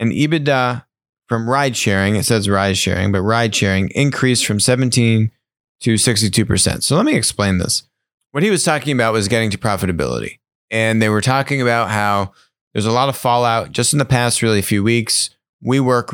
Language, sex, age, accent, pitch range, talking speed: English, male, 30-49, American, 100-125 Hz, 170 wpm